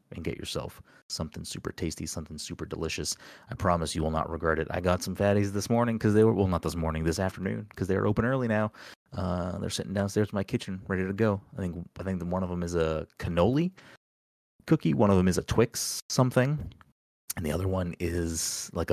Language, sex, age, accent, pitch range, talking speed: English, male, 30-49, American, 80-100 Hz, 220 wpm